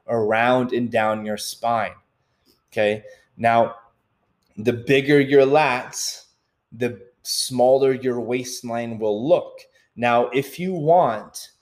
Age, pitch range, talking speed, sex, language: 20-39, 110-135 Hz, 110 wpm, male, English